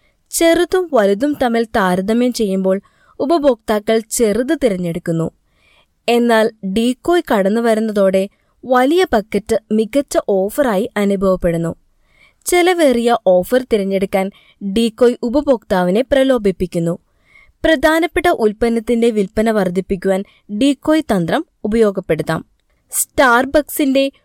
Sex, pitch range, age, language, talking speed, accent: female, 195-285 Hz, 20-39, Malayalam, 75 wpm, native